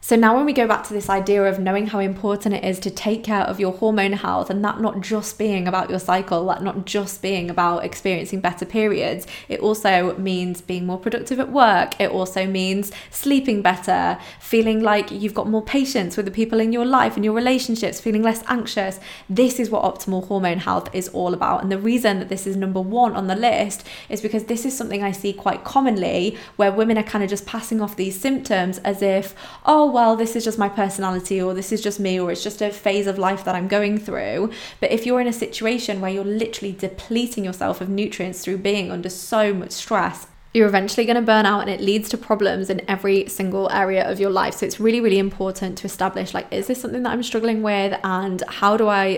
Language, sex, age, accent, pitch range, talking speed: English, female, 20-39, British, 190-220 Hz, 230 wpm